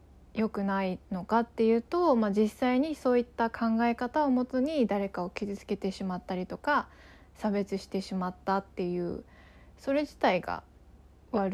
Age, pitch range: 20-39, 185-235 Hz